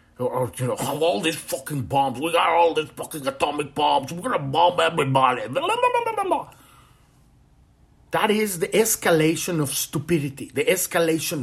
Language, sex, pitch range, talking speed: English, male, 125-195 Hz, 185 wpm